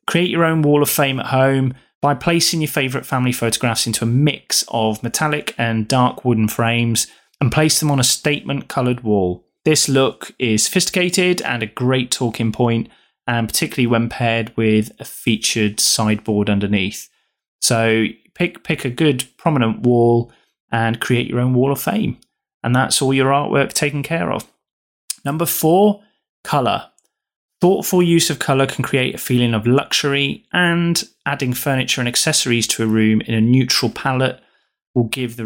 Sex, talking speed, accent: male, 170 wpm, British